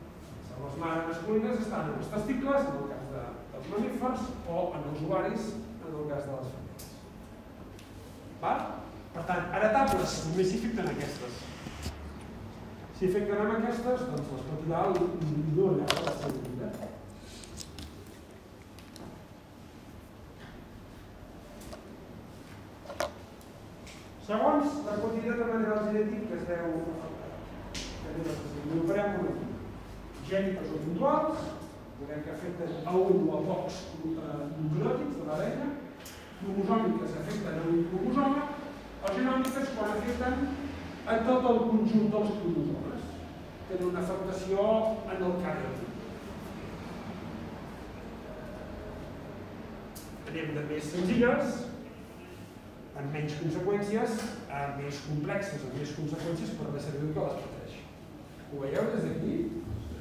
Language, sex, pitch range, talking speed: English, male, 140-215 Hz, 100 wpm